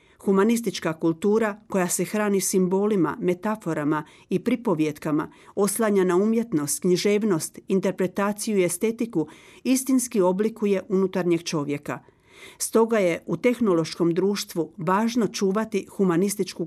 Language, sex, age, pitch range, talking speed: Croatian, female, 40-59, 170-215 Hz, 100 wpm